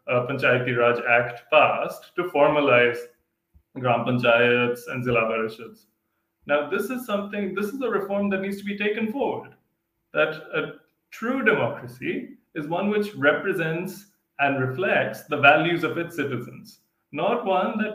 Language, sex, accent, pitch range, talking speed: English, male, Indian, 125-180 Hz, 140 wpm